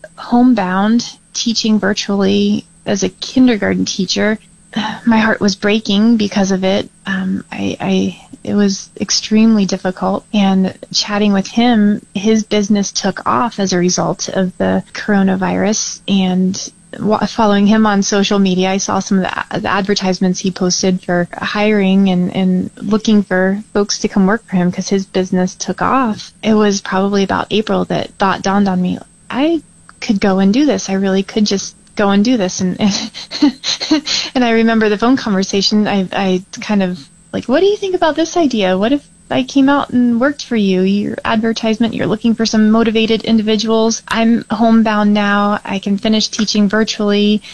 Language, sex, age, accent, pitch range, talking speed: English, female, 20-39, American, 190-225 Hz, 175 wpm